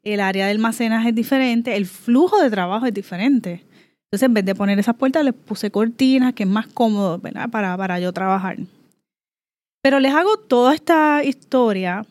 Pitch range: 200-280 Hz